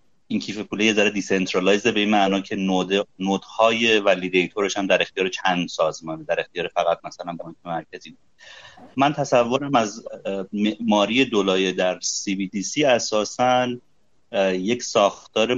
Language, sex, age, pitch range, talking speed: Persian, male, 30-49, 95-120 Hz, 145 wpm